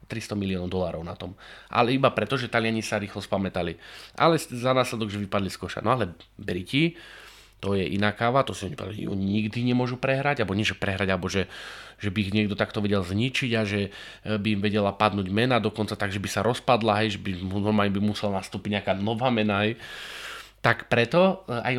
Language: English